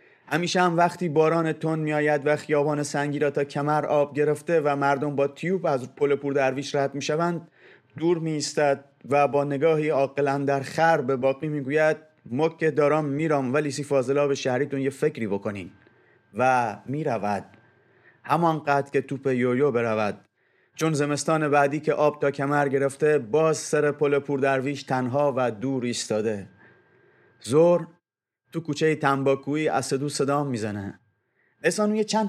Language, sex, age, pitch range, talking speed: Persian, male, 30-49, 130-155 Hz, 145 wpm